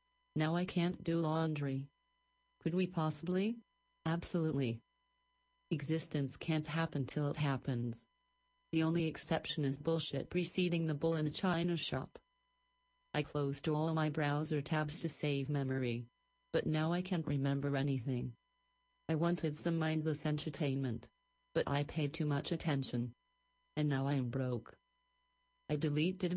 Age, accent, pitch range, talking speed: 40-59, American, 145-200 Hz, 135 wpm